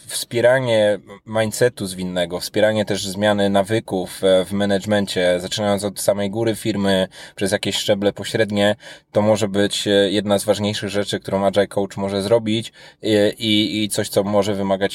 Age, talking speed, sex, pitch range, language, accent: 20-39, 150 wpm, male, 95-110 Hz, Polish, native